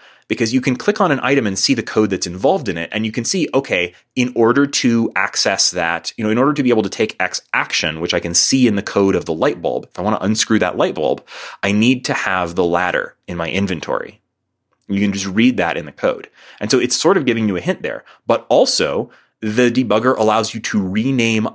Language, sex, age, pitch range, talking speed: English, male, 30-49, 90-120 Hz, 250 wpm